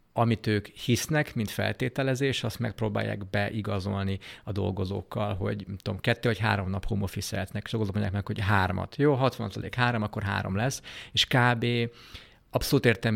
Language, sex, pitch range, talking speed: Hungarian, male, 100-115 Hz, 145 wpm